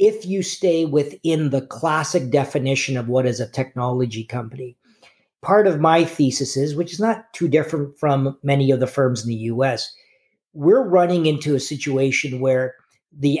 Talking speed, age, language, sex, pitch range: 170 wpm, 50-69, English, male, 135-165 Hz